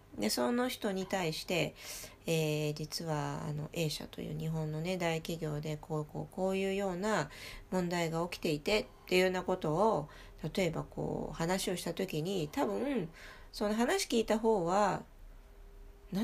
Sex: female